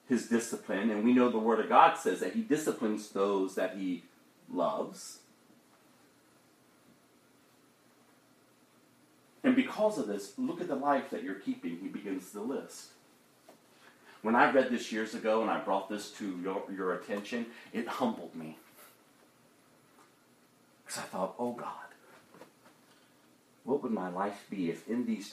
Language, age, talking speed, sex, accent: English, 40-59, 145 wpm, male, American